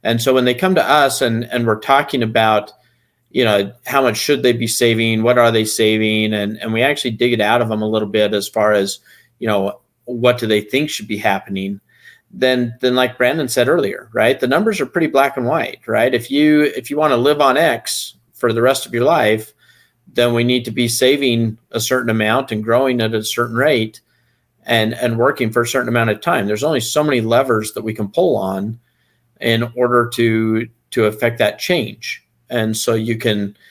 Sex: male